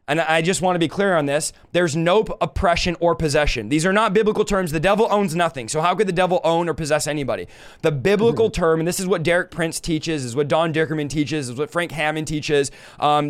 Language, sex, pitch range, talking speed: English, male, 155-195 Hz, 245 wpm